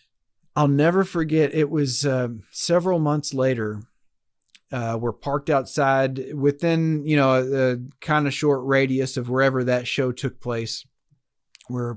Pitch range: 125-150 Hz